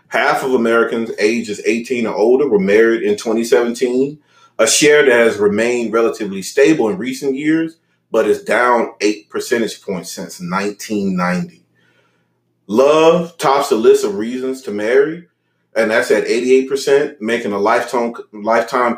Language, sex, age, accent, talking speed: English, male, 30-49, American, 140 wpm